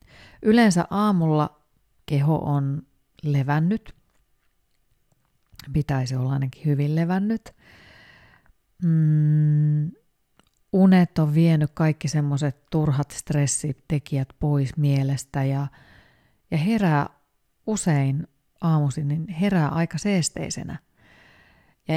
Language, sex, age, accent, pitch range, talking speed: Finnish, female, 30-49, native, 140-170 Hz, 80 wpm